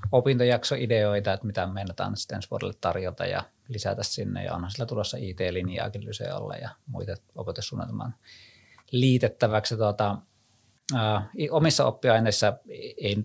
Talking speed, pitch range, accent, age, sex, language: 115 wpm, 100-115 Hz, native, 20-39, male, Finnish